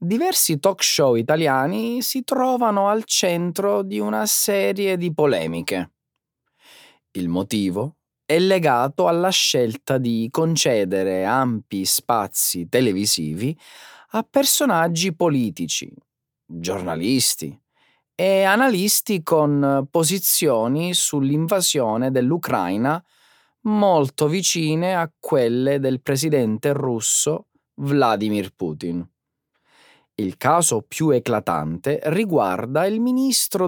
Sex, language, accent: male, Italian, native